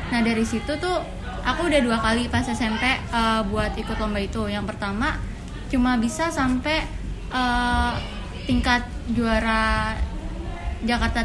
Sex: female